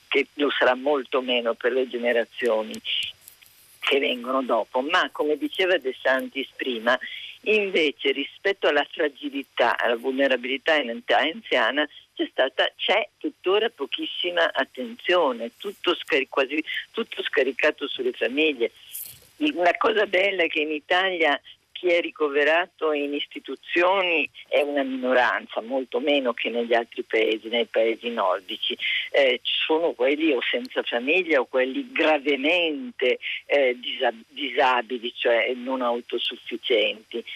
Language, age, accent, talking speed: Italian, 50-69, native, 125 wpm